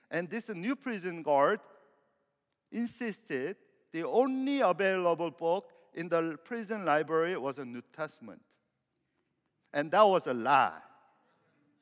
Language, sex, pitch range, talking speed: English, male, 140-225 Hz, 115 wpm